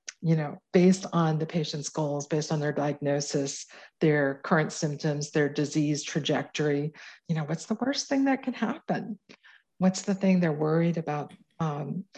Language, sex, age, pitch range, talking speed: English, female, 50-69, 155-180 Hz, 165 wpm